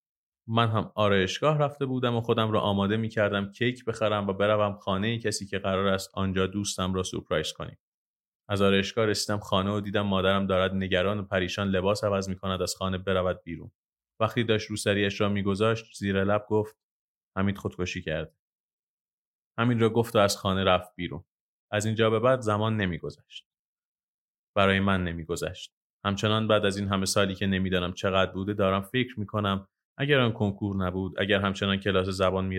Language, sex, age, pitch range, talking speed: Persian, male, 30-49, 95-110 Hz, 180 wpm